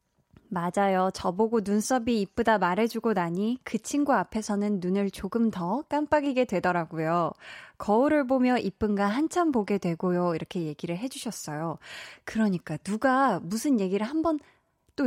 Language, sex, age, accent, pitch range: Korean, female, 20-39, native, 185-270 Hz